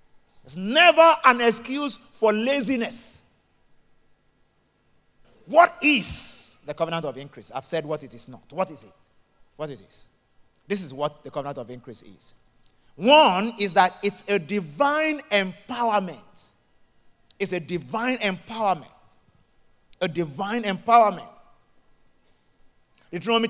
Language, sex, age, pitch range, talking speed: English, male, 50-69, 155-225 Hz, 120 wpm